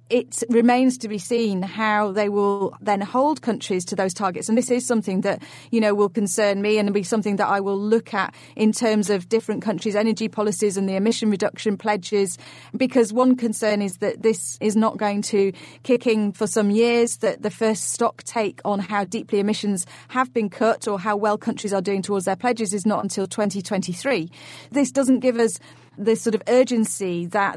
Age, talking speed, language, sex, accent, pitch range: 30-49, 205 wpm, English, female, British, 200-230 Hz